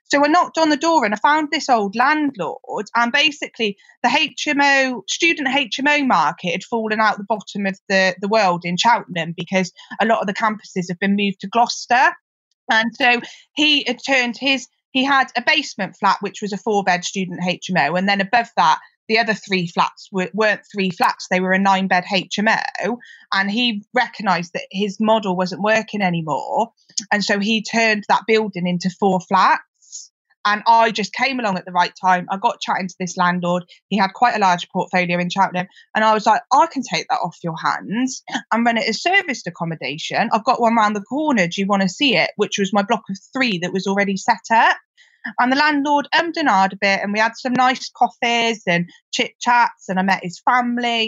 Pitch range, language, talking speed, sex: 190-250 Hz, English, 210 wpm, female